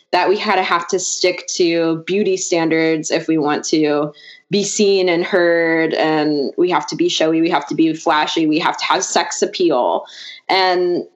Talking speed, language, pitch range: 195 wpm, English, 165-205 Hz